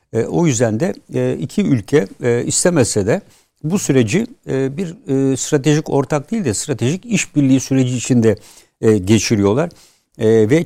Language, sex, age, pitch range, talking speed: Turkish, male, 60-79, 115-145 Hz, 115 wpm